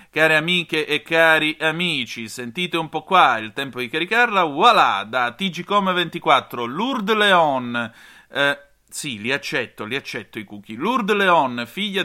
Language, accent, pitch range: Italian, native, 125-175 Hz